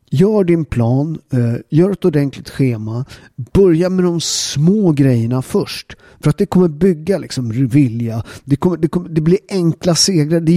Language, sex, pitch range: Swedish, male, 115-155 Hz